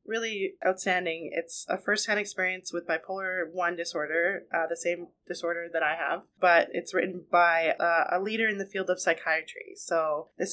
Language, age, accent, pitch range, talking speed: English, 20-39, American, 165-190 Hz, 175 wpm